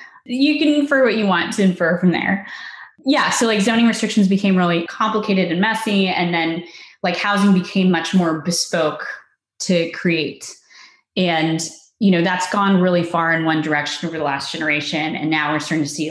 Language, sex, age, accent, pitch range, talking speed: English, female, 20-39, American, 155-190 Hz, 185 wpm